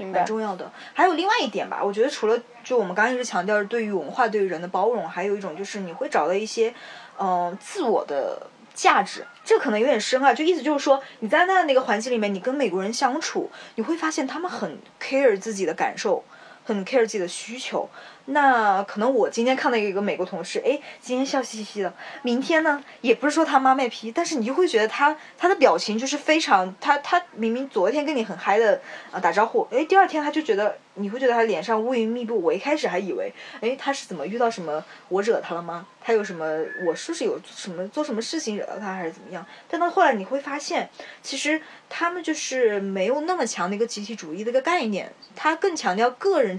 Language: Chinese